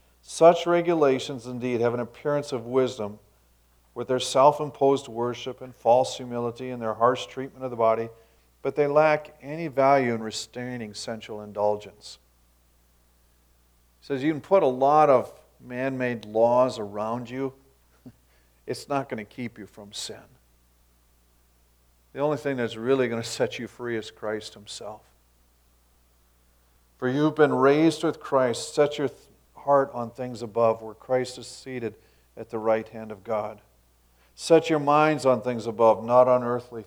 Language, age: English, 50-69